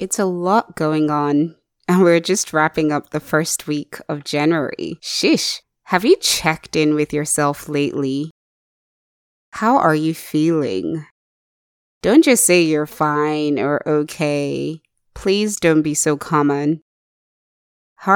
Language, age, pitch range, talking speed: English, 20-39, 145-165 Hz, 130 wpm